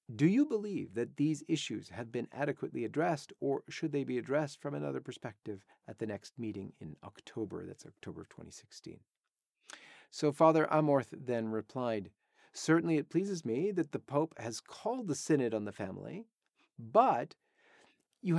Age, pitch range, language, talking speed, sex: 40-59, 130-185 Hz, English, 160 wpm, male